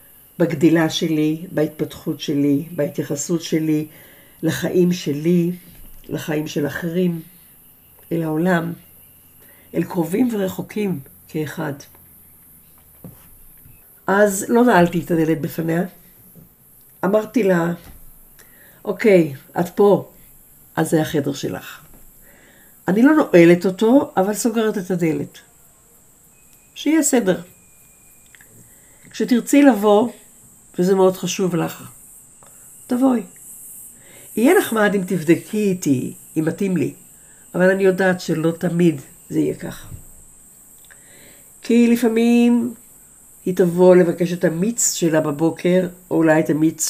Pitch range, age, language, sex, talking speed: 155-195 Hz, 50-69, Hebrew, female, 100 wpm